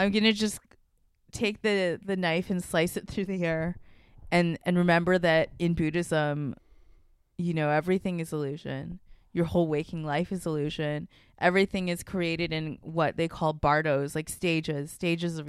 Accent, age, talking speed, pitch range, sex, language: American, 20-39, 165 wpm, 155-180 Hz, female, English